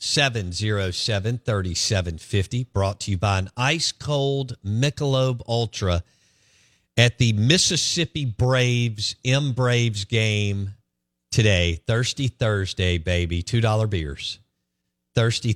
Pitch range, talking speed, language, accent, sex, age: 90-125 Hz, 95 wpm, English, American, male, 40-59